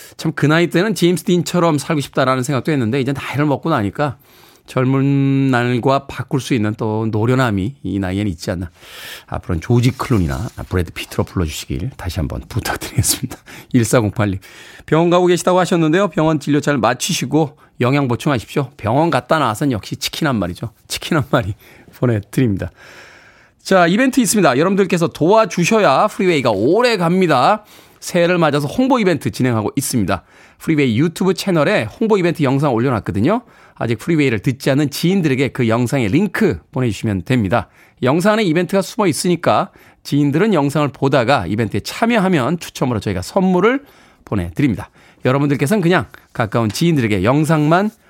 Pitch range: 115-175 Hz